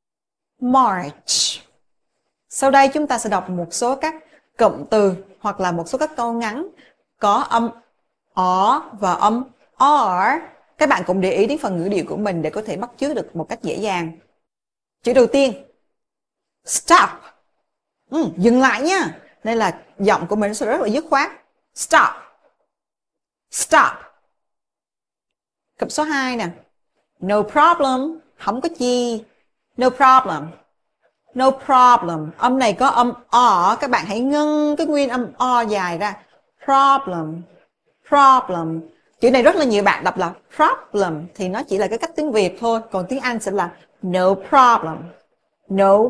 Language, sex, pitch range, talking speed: Vietnamese, female, 195-270 Hz, 160 wpm